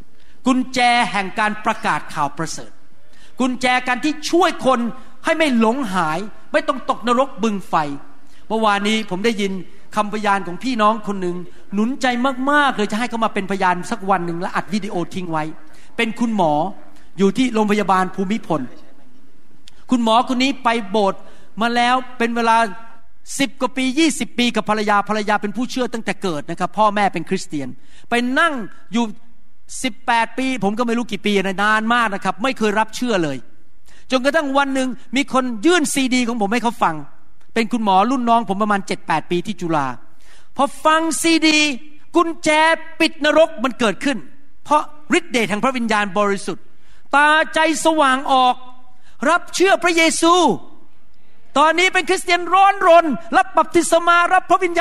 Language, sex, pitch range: Thai, male, 205-285 Hz